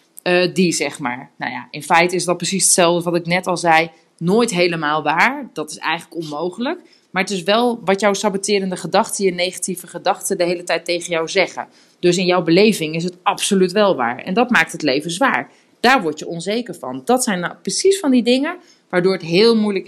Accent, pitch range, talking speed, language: Dutch, 160-200 Hz, 215 wpm, Dutch